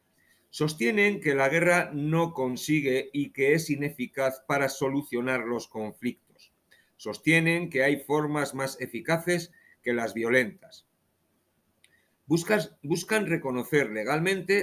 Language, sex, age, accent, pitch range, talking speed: Spanish, male, 50-69, Spanish, 115-150 Hz, 105 wpm